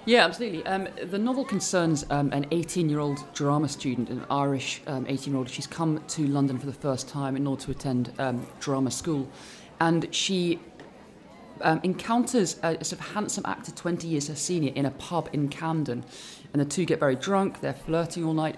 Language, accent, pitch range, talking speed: English, British, 145-175 Hz, 190 wpm